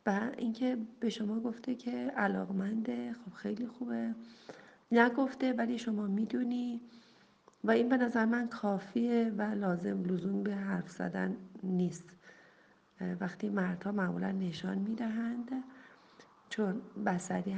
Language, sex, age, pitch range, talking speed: Persian, female, 40-59, 190-235 Hz, 115 wpm